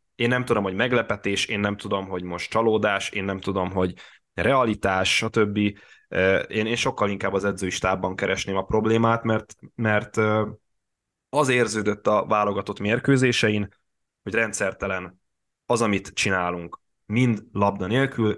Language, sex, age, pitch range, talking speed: Hungarian, male, 10-29, 100-120 Hz, 135 wpm